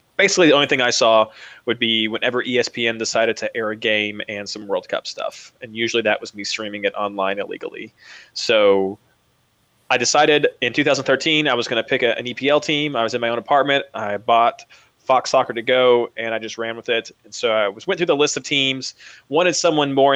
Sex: male